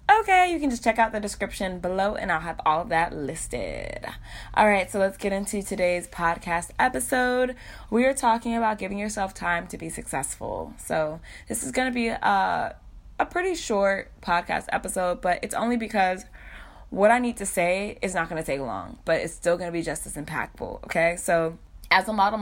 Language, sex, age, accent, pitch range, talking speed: English, female, 20-39, American, 165-215 Hz, 205 wpm